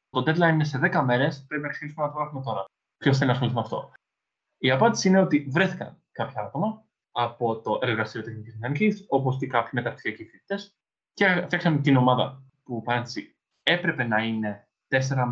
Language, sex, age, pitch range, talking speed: Greek, male, 20-39, 120-170 Hz, 180 wpm